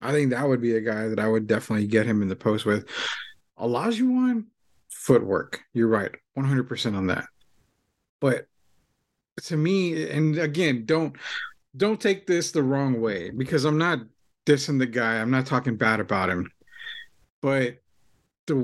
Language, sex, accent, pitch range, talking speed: English, male, American, 115-150 Hz, 165 wpm